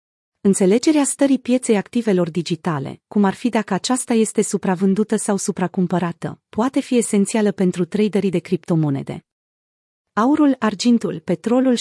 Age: 30-49